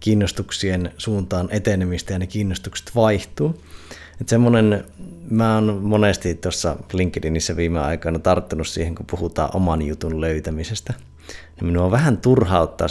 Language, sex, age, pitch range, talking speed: Finnish, male, 30-49, 80-105 Hz, 125 wpm